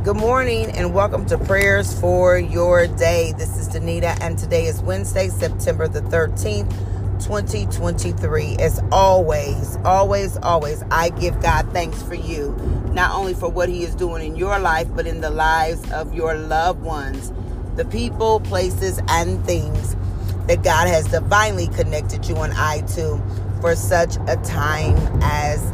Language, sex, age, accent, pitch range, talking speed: English, female, 40-59, American, 90-105 Hz, 155 wpm